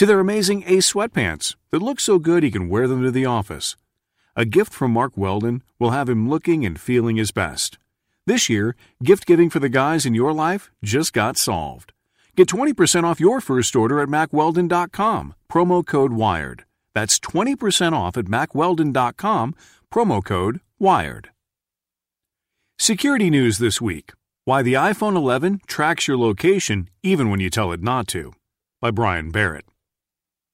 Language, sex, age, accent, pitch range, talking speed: English, male, 40-59, American, 105-160 Hz, 160 wpm